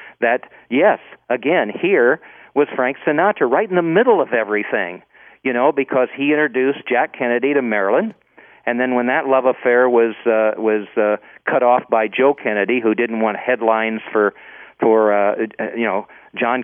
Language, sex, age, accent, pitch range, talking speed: English, male, 50-69, American, 110-130 Hz, 175 wpm